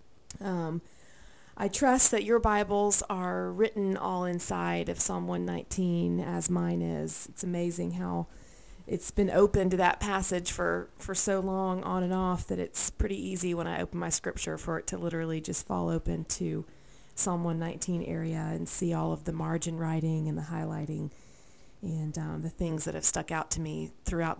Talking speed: 180 wpm